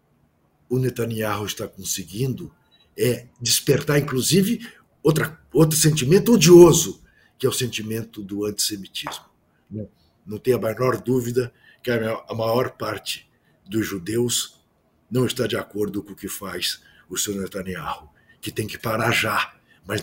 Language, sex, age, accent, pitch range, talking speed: Portuguese, male, 60-79, Brazilian, 105-150 Hz, 145 wpm